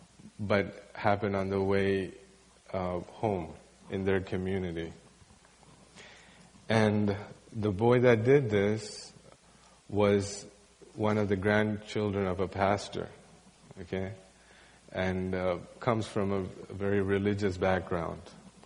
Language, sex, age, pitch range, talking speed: English, male, 30-49, 95-115 Hz, 105 wpm